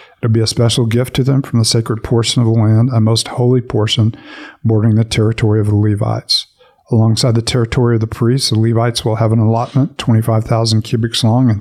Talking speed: 210 wpm